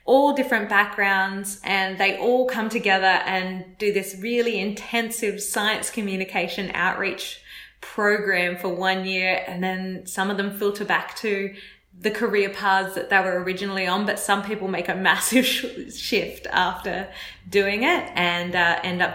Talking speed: 155 wpm